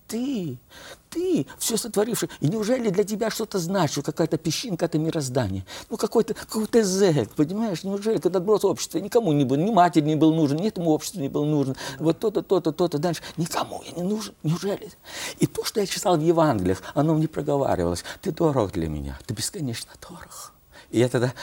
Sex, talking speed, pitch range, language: male, 190 wpm, 125-200 Hz, Russian